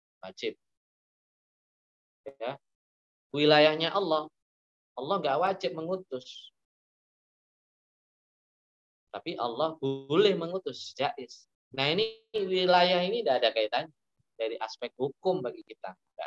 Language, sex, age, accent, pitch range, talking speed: Indonesian, male, 20-39, native, 95-160 Hz, 95 wpm